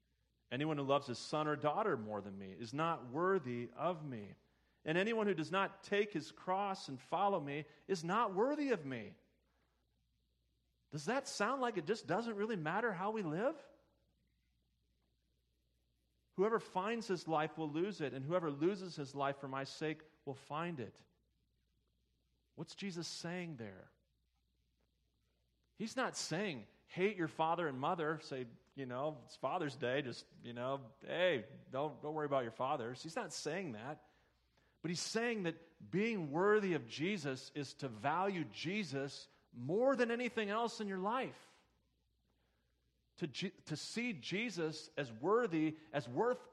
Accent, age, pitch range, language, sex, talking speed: American, 40-59, 120-195 Hz, English, male, 155 wpm